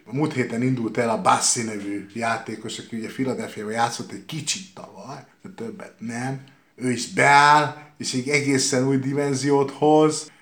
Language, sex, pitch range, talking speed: Hungarian, male, 125-160 Hz, 160 wpm